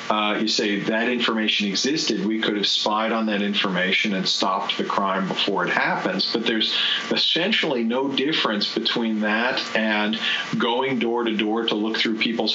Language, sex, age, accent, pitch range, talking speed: English, male, 40-59, American, 105-125 Hz, 170 wpm